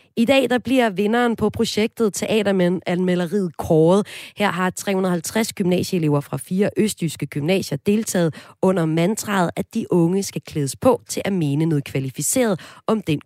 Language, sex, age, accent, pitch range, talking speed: Danish, female, 30-49, native, 160-225 Hz, 155 wpm